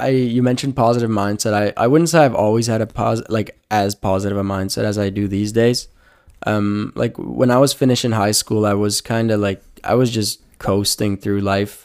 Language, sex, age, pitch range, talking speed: English, male, 10-29, 100-115 Hz, 225 wpm